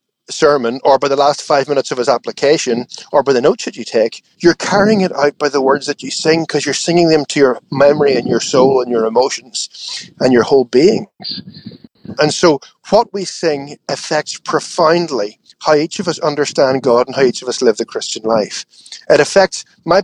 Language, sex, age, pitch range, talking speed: English, male, 40-59, 130-160 Hz, 205 wpm